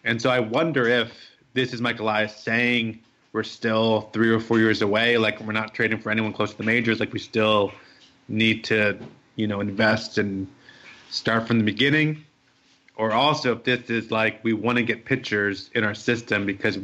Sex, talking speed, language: male, 190 wpm, English